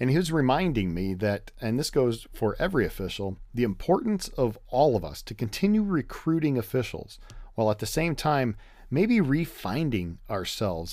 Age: 40-59